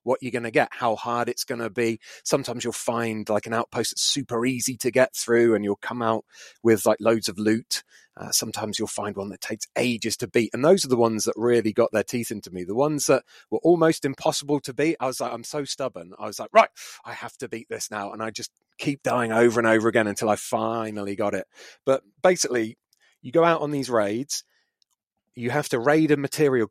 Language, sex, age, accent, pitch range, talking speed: English, male, 30-49, British, 110-135 Hz, 240 wpm